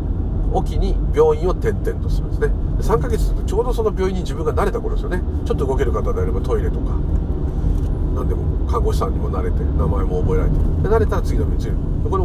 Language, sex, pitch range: Japanese, male, 75-90 Hz